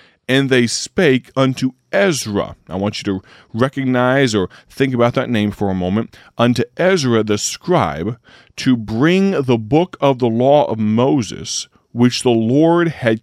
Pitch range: 105-130 Hz